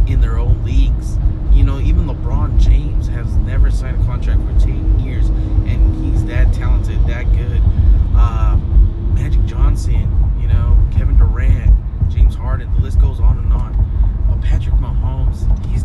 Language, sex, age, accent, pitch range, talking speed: English, male, 20-39, American, 85-100 Hz, 165 wpm